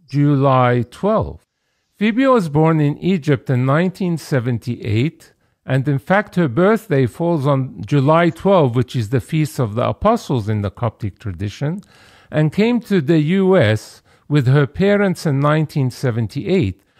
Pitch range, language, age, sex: 125-180 Hz, English, 50-69, male